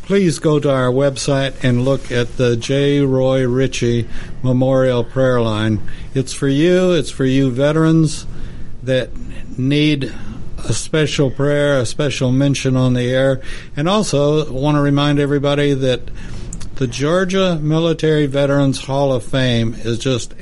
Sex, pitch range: male, 125-150 Hz